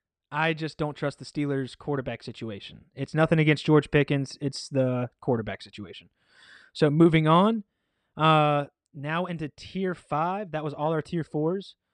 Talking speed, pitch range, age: 155 wpm, 135-170 Hz, 20-39